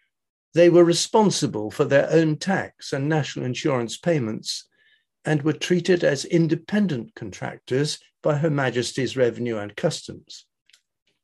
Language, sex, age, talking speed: English, male, 60-79, 125 wpm